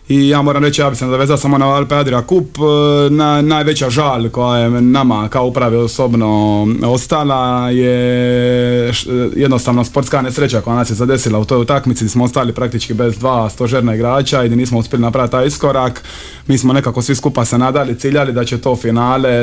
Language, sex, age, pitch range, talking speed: Croatian, male, 20-39, 115-135 Hz, 190 wpm